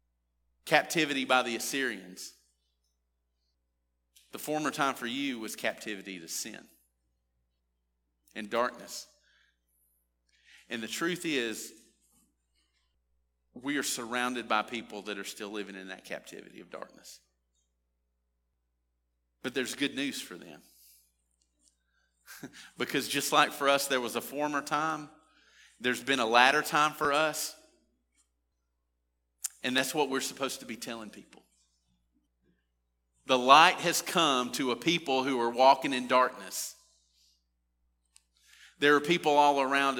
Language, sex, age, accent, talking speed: English, male, 40-59, American, 125 wpm